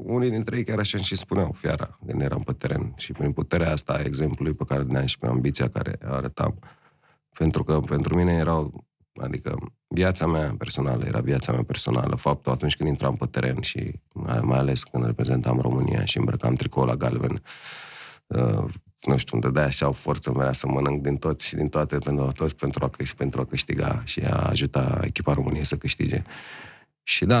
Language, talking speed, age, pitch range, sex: Romanian, 195 wpm, 30-49, 70-80 Hz, male